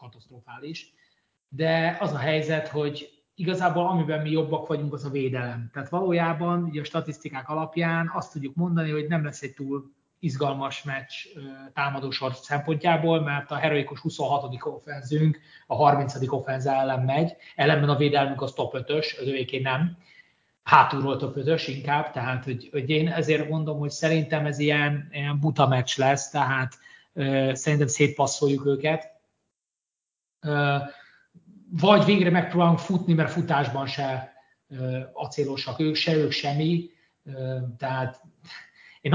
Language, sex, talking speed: Hungarian, male, 130 wpm